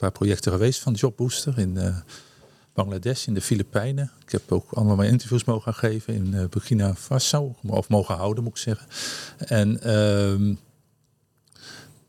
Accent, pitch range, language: Dutch, 105-135 Hz, Dutch